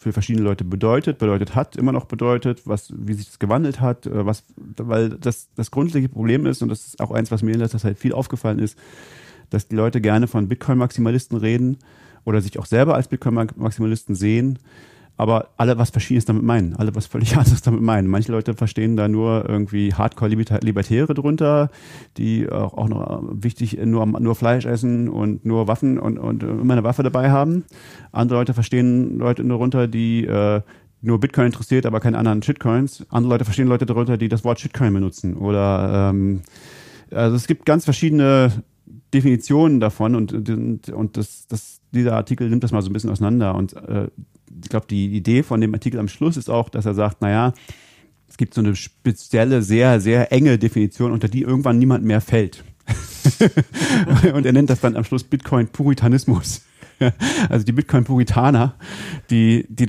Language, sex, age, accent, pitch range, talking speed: German, male, 40-59, German, 110-130 Hz, 180 wpm